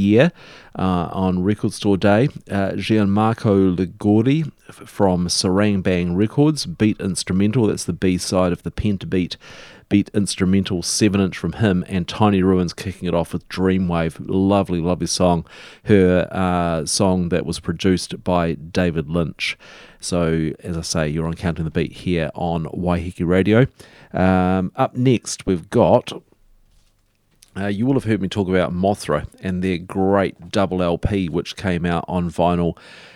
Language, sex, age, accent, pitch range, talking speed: English, male, 40-59, Australian, 90-105 Hz, 155 wpm